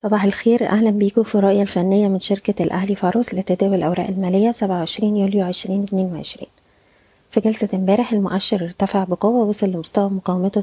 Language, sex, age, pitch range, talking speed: Arabic, female, 20-39, 180-205 Hz, 145 wpm